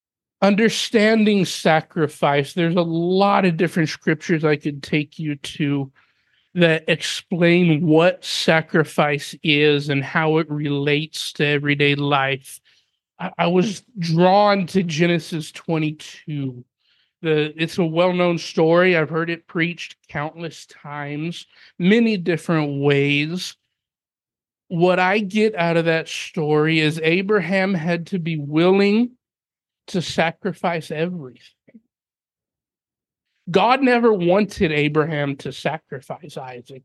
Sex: male